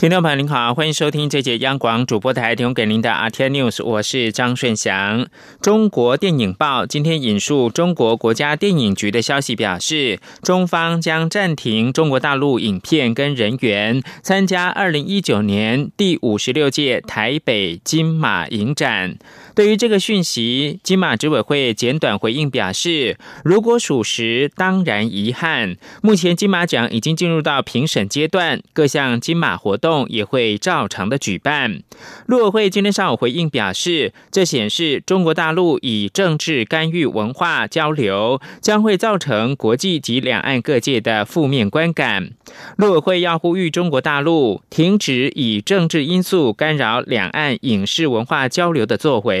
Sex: male